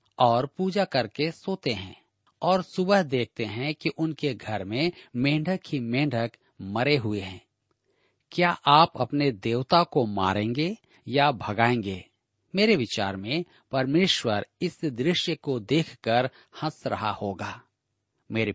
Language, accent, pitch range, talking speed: Hindi, native, 115-165 Hz, 125 wpm